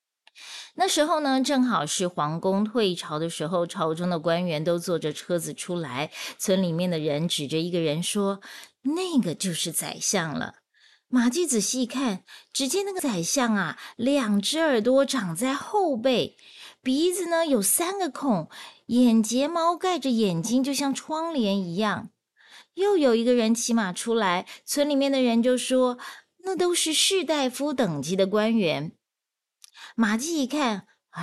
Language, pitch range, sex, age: Chinese, 175-265 Hz, female, 30-49